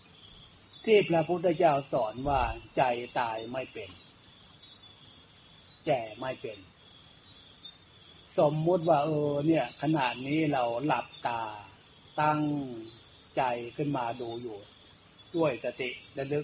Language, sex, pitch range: Thai, male, 115-155 Hz